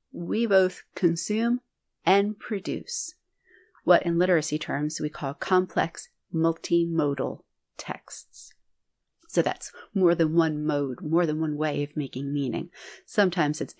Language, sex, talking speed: English, female, 125 wpm